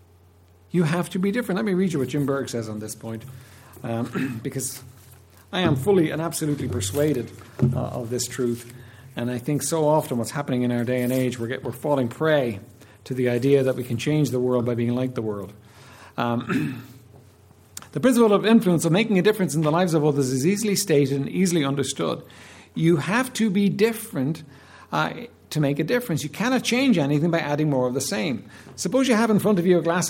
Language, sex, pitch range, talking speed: English, male, 120-170 Hz, 215 wpm